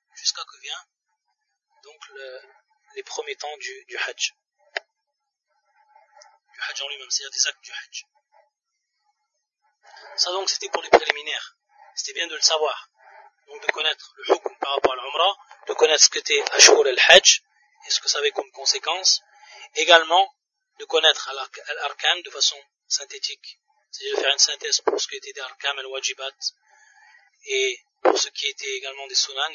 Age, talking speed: 30-49, 170 wpm